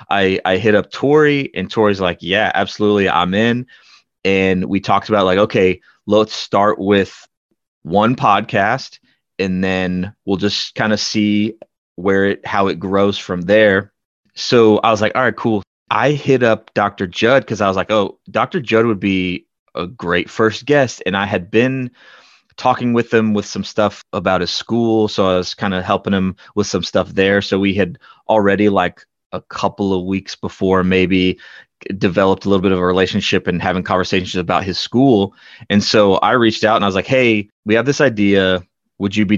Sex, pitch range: male, 95-110 Hz